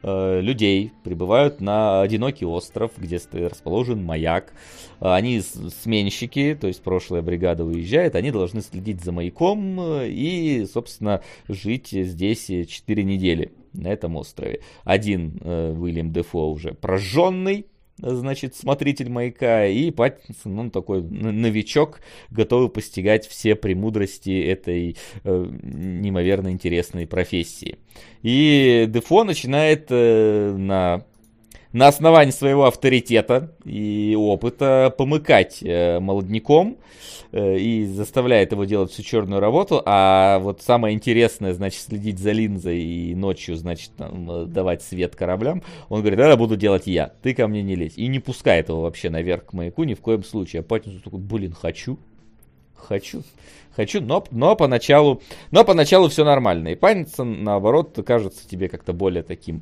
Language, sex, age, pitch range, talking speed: Russian, male, 30-49, 90-125 Hz, 135 wpm